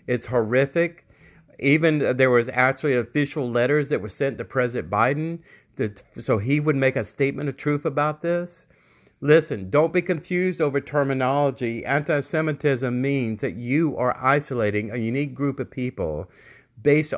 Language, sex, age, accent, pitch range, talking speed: English, male, 50-69, American, 120-155 Hz, 145 wpm